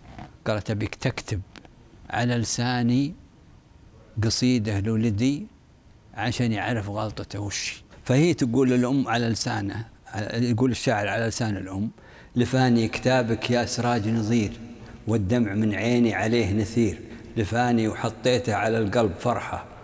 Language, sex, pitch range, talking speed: Arabic, male, 110-125 Hz, 110 wpm